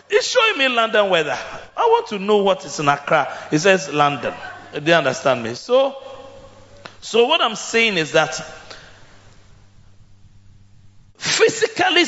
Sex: male